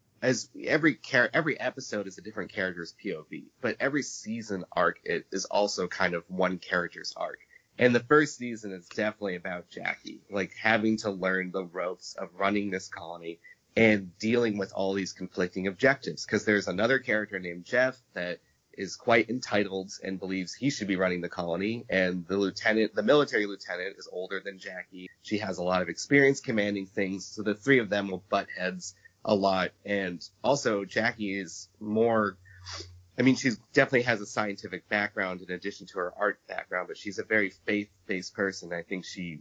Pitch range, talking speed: 90-105 Hz, 185 wpm